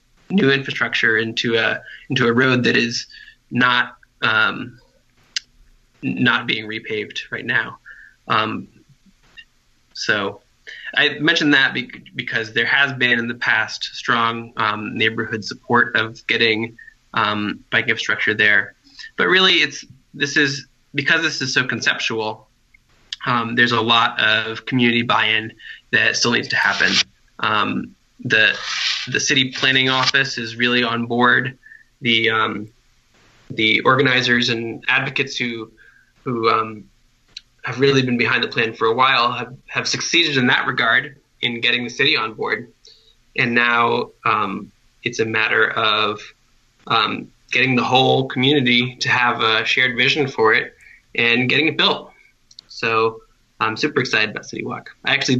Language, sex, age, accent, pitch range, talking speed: English, male, 20-39, American, 115-140 Hz, 140 wpm